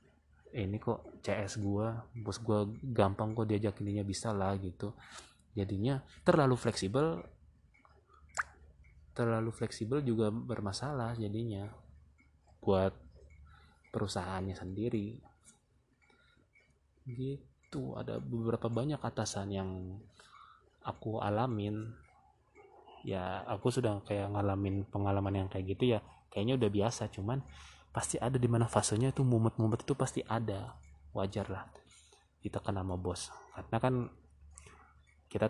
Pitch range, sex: 95-115 Hz, male